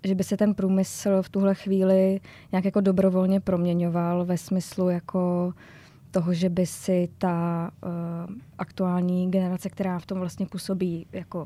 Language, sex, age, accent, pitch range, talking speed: Czech, female, 20-39, native, 175-195 Hz, 150 wpm